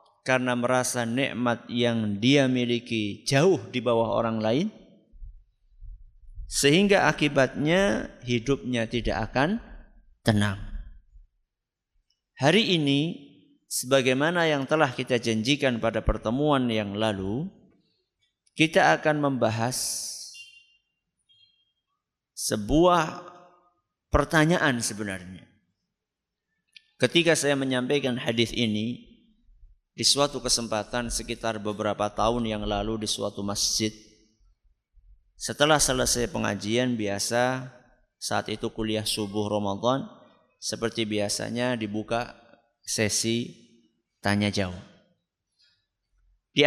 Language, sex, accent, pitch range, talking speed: Indonesian, male, native, 105-140 Hz, 85 wpm